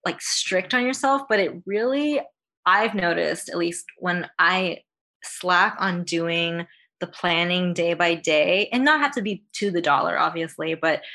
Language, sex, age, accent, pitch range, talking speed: English, female, 20-39, American, 165-205 Hz, 165 wpm